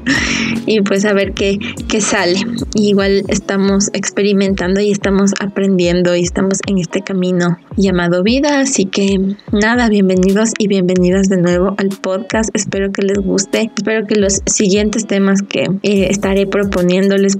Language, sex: Spanish, female